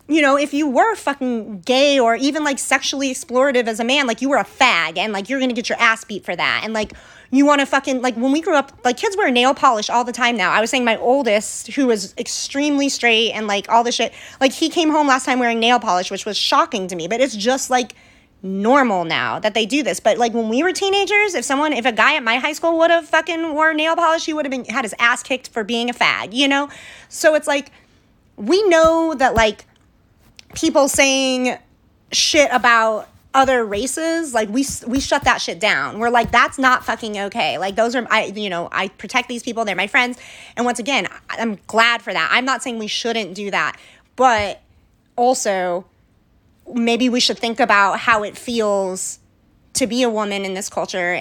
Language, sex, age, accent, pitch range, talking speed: English, female, 30-49, American, 215-275 Hz, 225 wpm